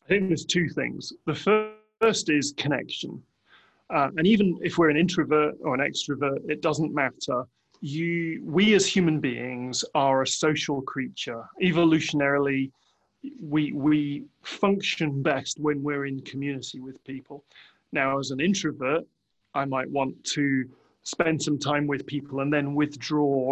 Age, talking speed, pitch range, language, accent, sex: 30-49, 150 wpm, 140-170 Hz, English, British, male